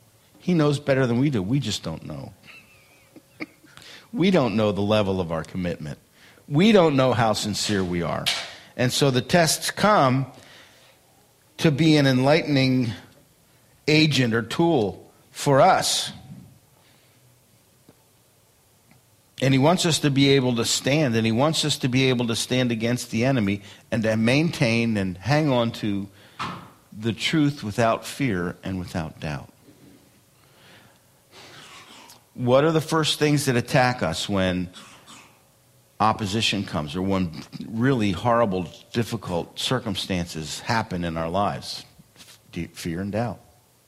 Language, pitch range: English, 100-135 Hz